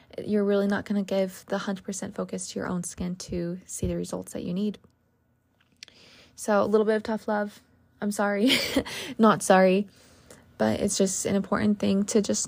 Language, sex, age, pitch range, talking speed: English, female, 20-39, 185-210 Hz, 190 wpm